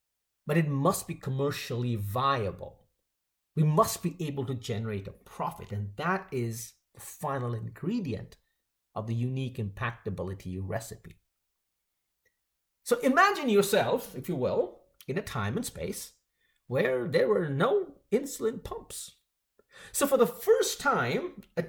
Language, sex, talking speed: English, male, 135 wpm